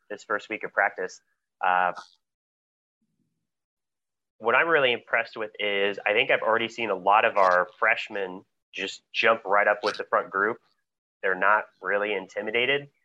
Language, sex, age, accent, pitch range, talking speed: English, male, 30-49, American, 95-105 Hz, 155 wpm